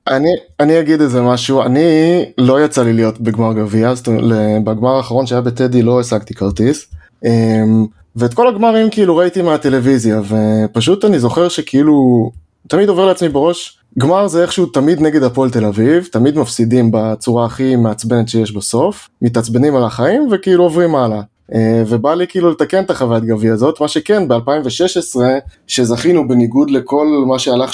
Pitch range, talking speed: 115-140 Hz, 150 wpm